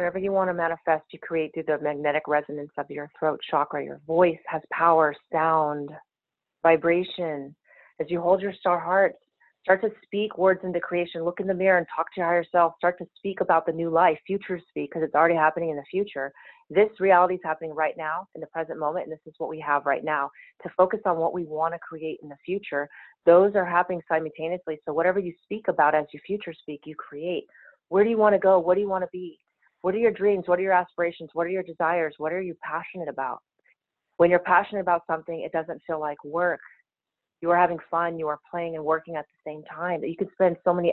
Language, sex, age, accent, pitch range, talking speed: English, female, 30-49, American, 155-180 Hz, 230 wpm